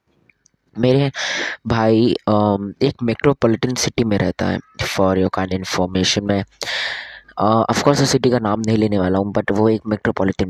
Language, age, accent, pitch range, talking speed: Hindi, 20-39, native, 100-125 Hz, 150 wpm